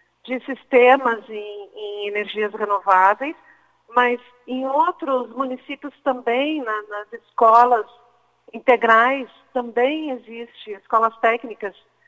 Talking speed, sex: 90 wpm, female